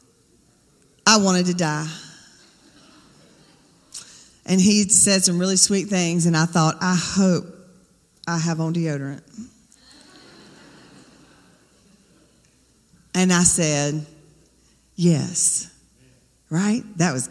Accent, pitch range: American, 160-205 Hz